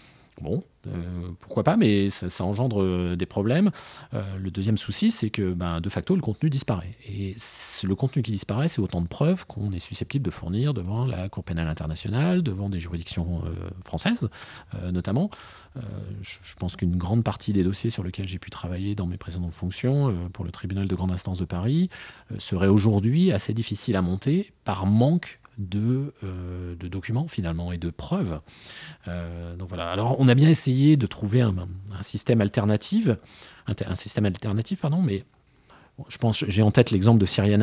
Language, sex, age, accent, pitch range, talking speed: French, male, 30-49, French, 95-120 Hz, 195 wpm